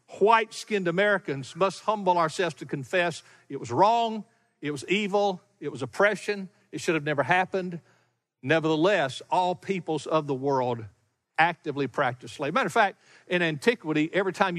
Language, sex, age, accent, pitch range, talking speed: English, male, 60-79, American, 155-215 Hz, 150 wpm